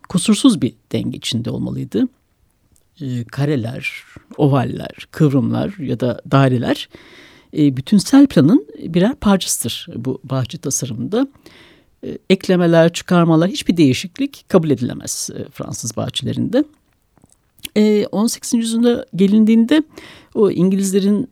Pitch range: 135-220 Hz